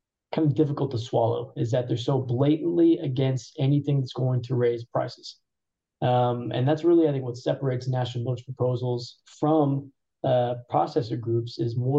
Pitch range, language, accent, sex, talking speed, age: 120-145 Hz, English, American, male, 170 wpm, 20-39